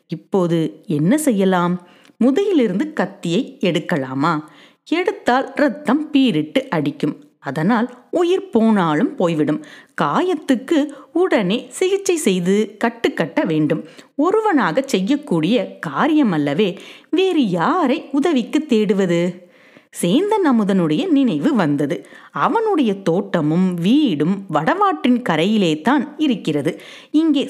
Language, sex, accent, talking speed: Tamil, female, native, 85 wpm